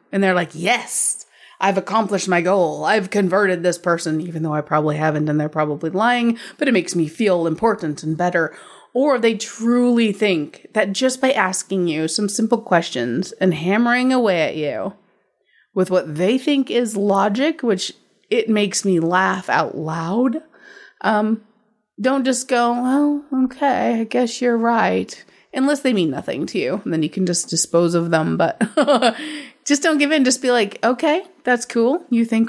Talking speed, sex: 175 wpm, female